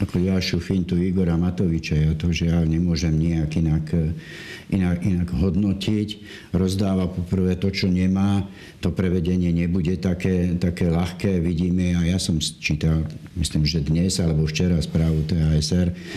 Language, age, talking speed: Slovak, 60-79, 145 wpm